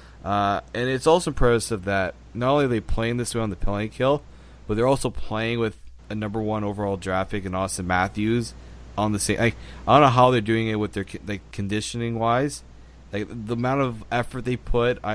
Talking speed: 220 wpm